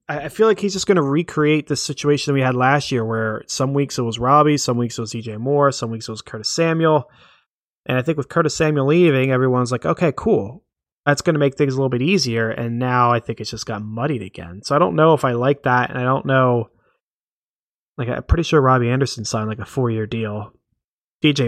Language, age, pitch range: English, 20-39, 115-150 Hz